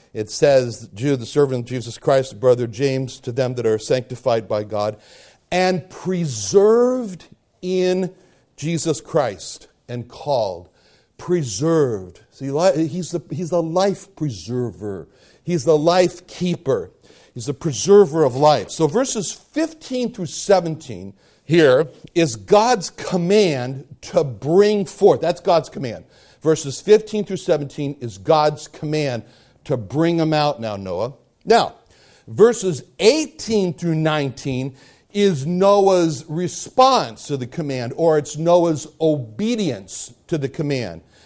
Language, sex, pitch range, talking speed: English, male, 125-175 Hz, 125 wpm